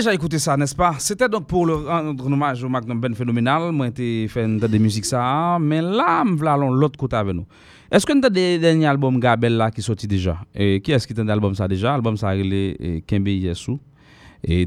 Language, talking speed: English, 245 wpm